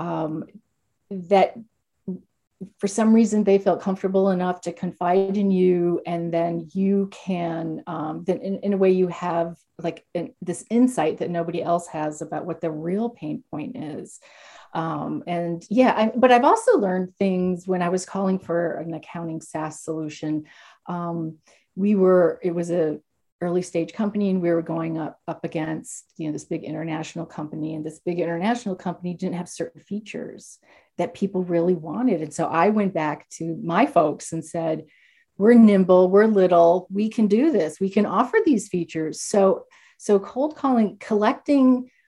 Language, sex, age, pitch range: English, female, 40-59, 160-195 Hz